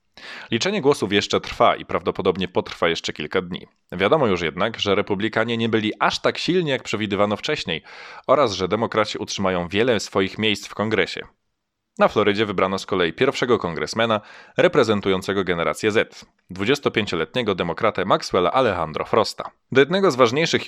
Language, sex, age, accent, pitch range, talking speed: Polish, male, 20-39, native, 95-120 Hz, 150 wpm